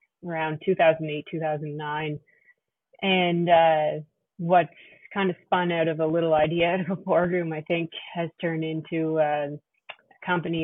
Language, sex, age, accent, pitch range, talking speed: English, female, 20-39, American, 155-170 Hz, 140 wpm